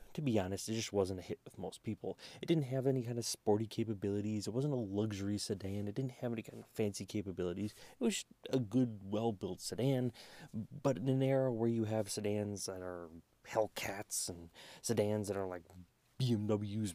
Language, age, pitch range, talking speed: English, 30-49, 100-125 Hz, 195 wpm